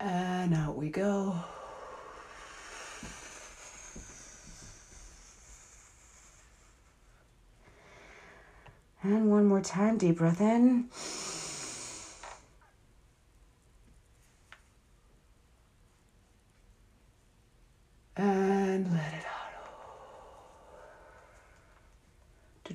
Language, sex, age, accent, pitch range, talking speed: English, female, 30-49, American, 155-195 Hz, 40 wpm